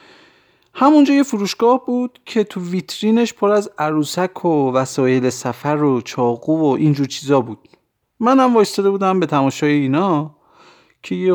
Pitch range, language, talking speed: 135-190 Hz, Persian, 135 wpm